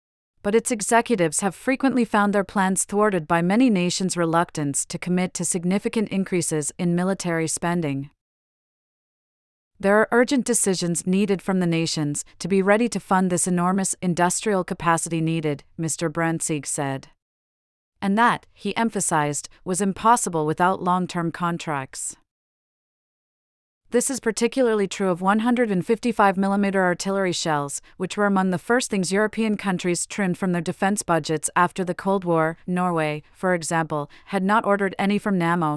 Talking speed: 145 wpm